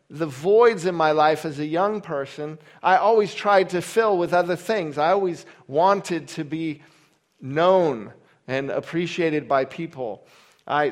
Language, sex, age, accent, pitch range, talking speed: English, male, 40-59, American, 145-180 Hz, 155 wpm